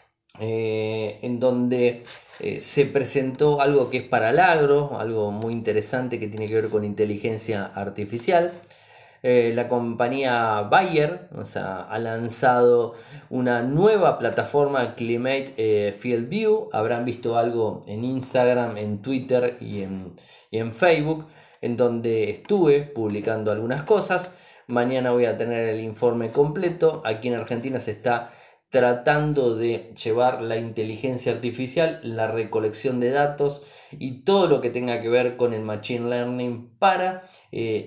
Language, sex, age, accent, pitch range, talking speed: Spanish, male, 20-39, Argentinian, 110-130 Hz, 145 wpm